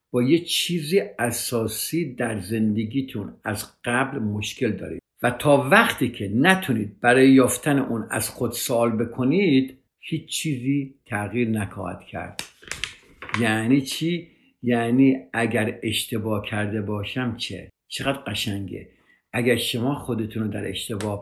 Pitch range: 105-140 Hz